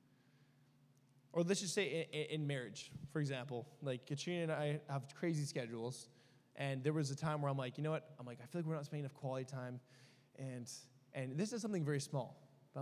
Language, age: English, 10-29